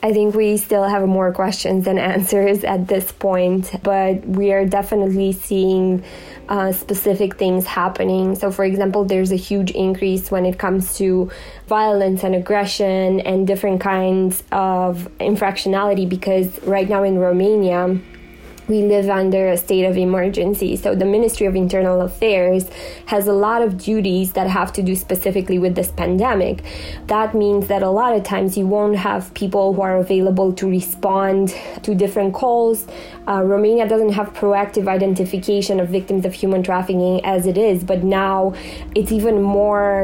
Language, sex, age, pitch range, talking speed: English, female, 20-39, 185-200 Hz, 165 wpm